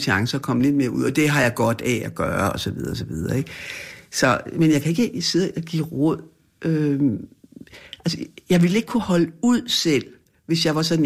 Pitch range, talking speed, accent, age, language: 120-155 Hz, 235 wpm, native, 60-79, Danish